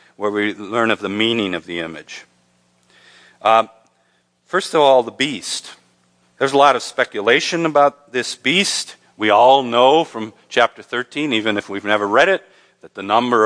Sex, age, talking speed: male, 40-59, 170 wpm